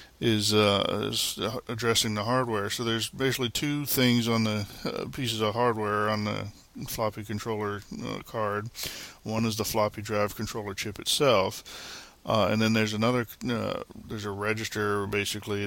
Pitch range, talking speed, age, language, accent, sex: 100-115 Hz, 155 wpm, 20-39, English, American, male